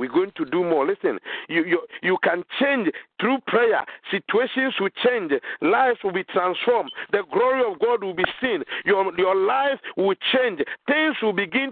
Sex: male